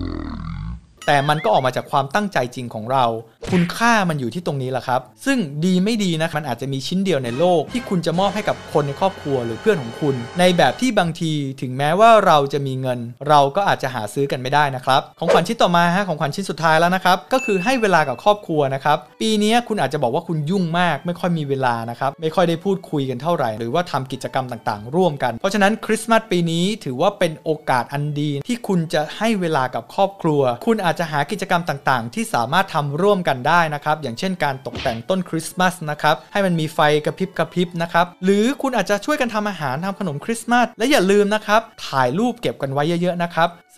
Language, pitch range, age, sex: Thai, 140-195 Hz, 20-39, male